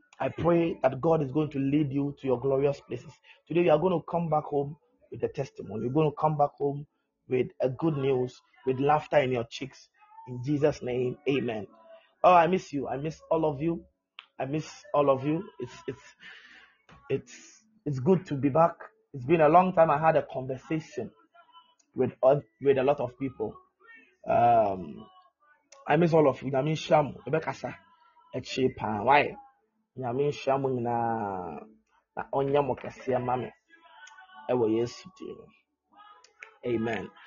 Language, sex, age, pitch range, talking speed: English, male, 30-49, 135-185 Hz, 140 wpm